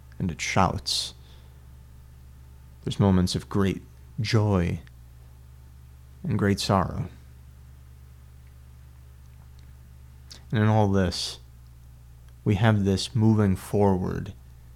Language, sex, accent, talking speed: English, male, American, 80 wpm